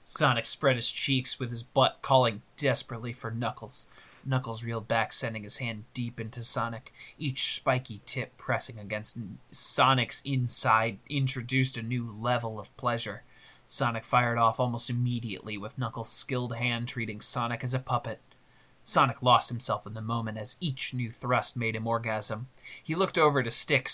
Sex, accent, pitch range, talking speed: male, American, 115-135 Hz, 165 wpm